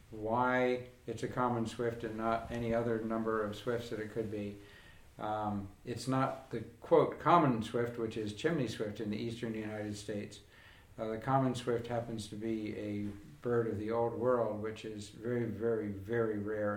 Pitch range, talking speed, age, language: 110-125 Hz, 185 wpm, 60-79, English